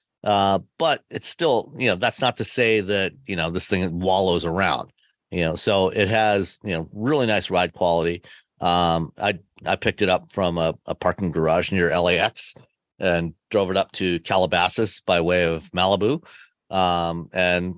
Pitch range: 85-105 Hz